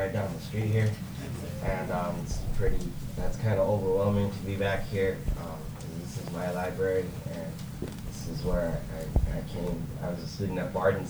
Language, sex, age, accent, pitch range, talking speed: English, male, 20-39, American, 90-105 Hz, 190 wpm